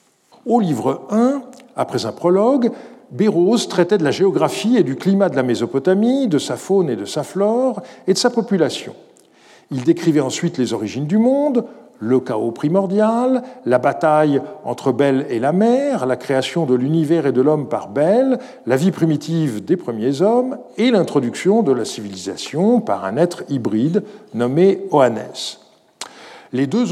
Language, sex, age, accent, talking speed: French, male, 50-69, French, 165 wpm